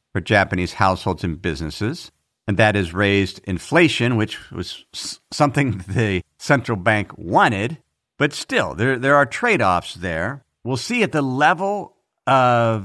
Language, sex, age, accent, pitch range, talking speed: English, male, 50-69, American, 105-140 Hz, 140 wpm